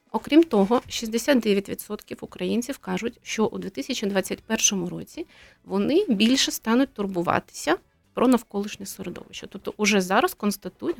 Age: 30-49